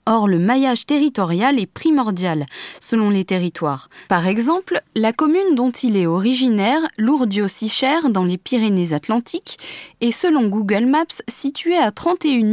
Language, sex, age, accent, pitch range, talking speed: French, female, 20-39, French, 200-280 Hz, 140 wpm